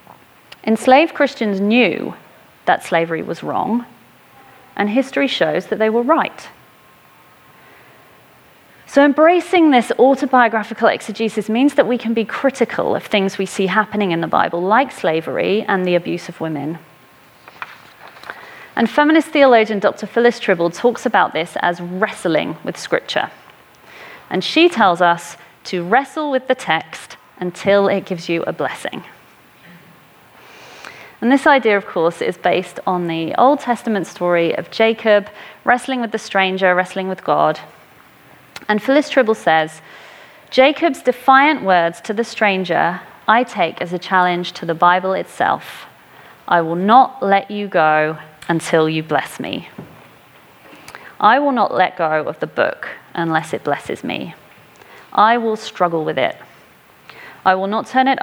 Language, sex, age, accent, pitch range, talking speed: English, female, 30-49, British, 175-245 Hz, 145 wpm